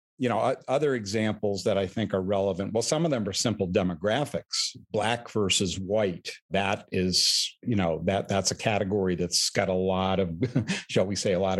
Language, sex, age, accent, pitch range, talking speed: English, male, 50-69, American, 95-115 Hz, 190 wpm